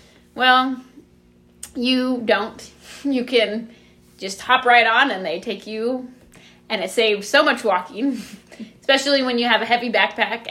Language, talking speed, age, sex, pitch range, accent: English, 150 wpm, 20-39, female, 190-230 Hz, American